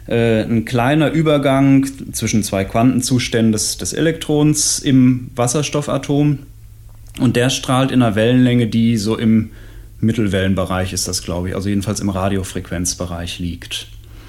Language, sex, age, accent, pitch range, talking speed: German, male, 30-49, German, 110-130 Hz, 125 wpm